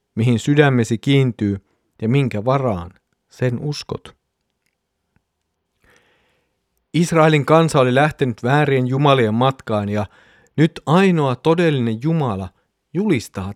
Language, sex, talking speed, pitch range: Finnish, male, 95 wpm, 105-145 Hz